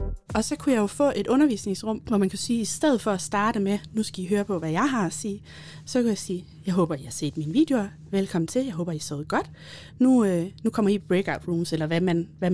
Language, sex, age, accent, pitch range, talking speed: Danish, female, 30-49, native, 170-215 Hz, 285 wpm